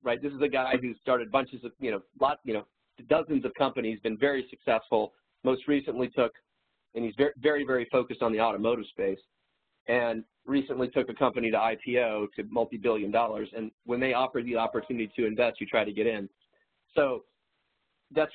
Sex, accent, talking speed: male, American, 185 wpm